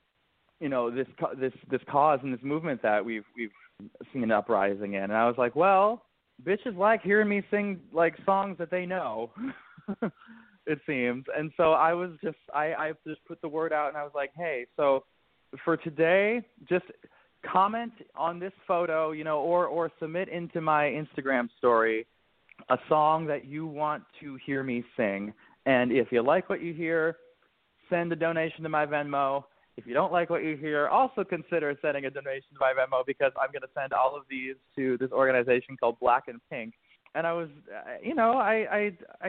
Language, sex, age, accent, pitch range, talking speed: English, male, 20-39, American, 130-180 Hz, 190 wpm